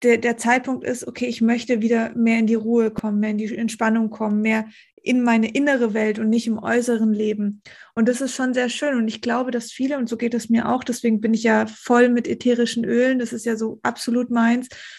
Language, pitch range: German, 225-255 Hz